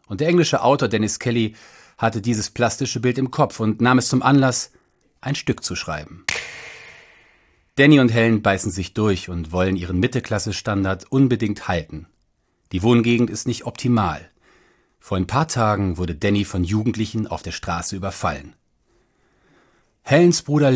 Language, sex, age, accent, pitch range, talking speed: German, male, 40-59, German, 100-135 Hz, 150 wpm